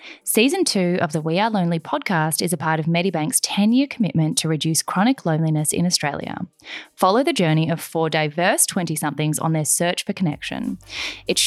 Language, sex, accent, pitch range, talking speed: English, female, Australian, 160-220 Hz, 180 wpm